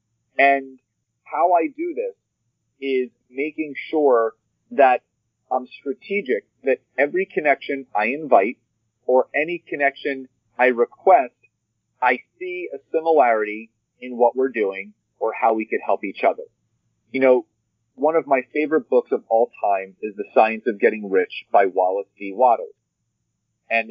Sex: male